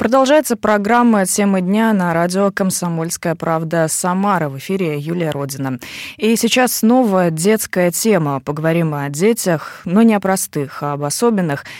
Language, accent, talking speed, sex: Russian, native, 140 wpm, female